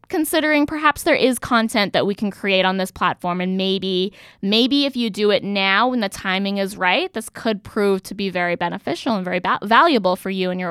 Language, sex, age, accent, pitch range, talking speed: English, female, 10-29, American, 190-255 Hz, 220 wpm